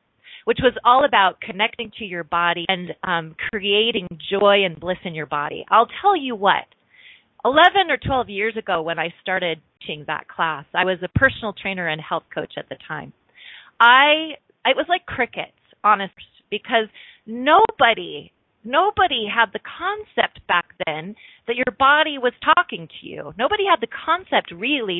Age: 30-49